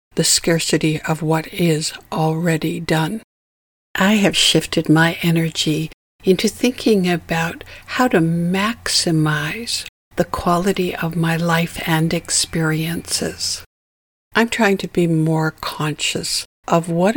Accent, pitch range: American, 160-195 Hz